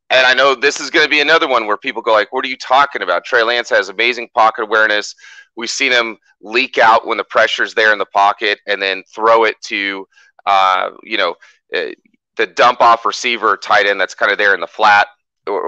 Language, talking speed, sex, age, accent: English, 225 wpm, male, 30-49, American